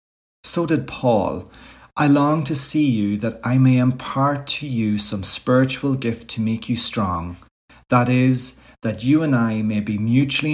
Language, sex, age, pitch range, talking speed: English, male, 30-49, 95-125 Hz, 170 wpm